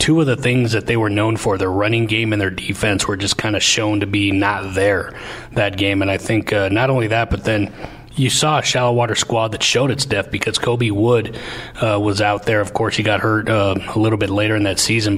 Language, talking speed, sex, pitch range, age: English, 255 wpm, male, 100-115 Hz, 30-49